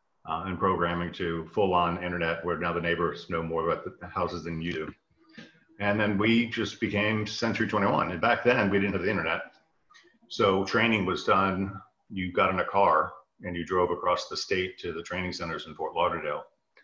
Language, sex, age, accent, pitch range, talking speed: English, male, 50-69, American, 85-100 Hz, 195 wpm